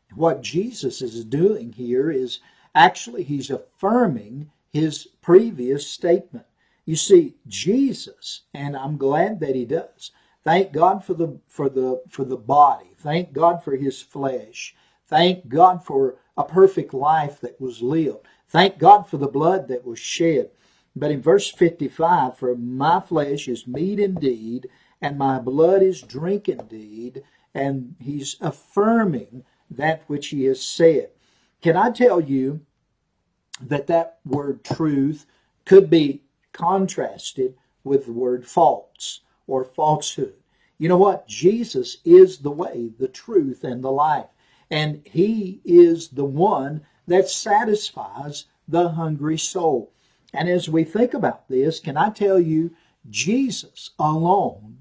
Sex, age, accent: male, 50-69, American